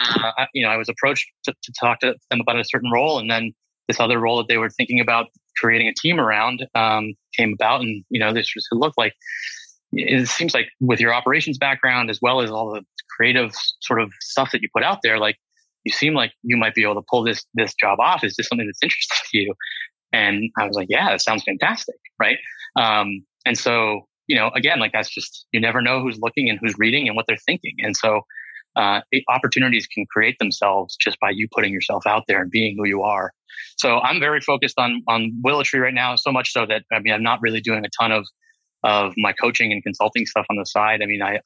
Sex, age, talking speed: male, 20-39, 235 wpm